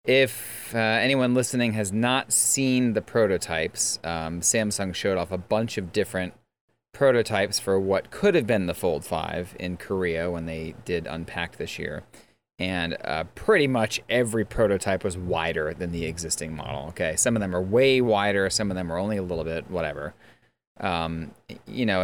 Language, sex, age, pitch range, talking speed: English, male, 30-49, 85-110 Hz, 175 wpm